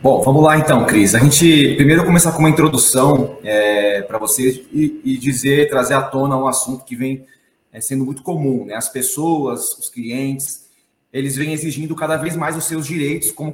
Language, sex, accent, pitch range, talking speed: Portuguese, male, Brazilian, 130-160 Hz, 205 wpm